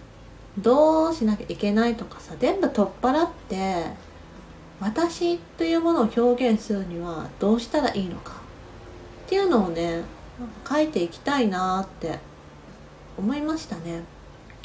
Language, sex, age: Japanese, female, 40-59